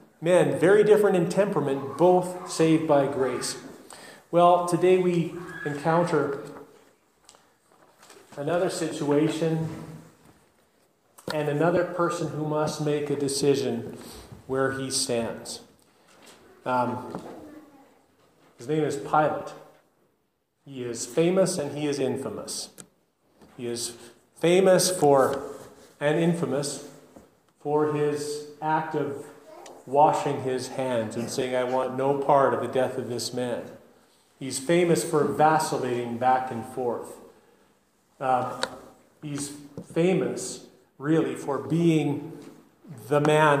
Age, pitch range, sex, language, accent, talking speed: 40-59, 130-155 Hz, male, English, American, 105 wpm